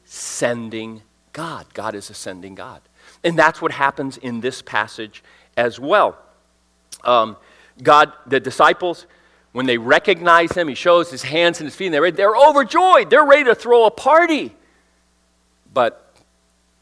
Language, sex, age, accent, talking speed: English, male, 40-59, American, 150 wpm